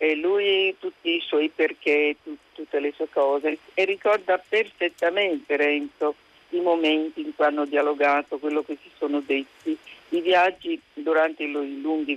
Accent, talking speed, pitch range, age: native, 155 wpm, 140-190 Hz, 50-69